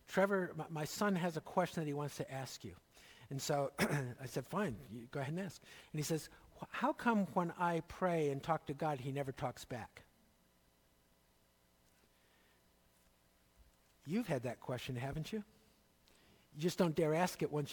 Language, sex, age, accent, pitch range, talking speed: English, male, 60-79, American, 135-195 Hz, 170 wpm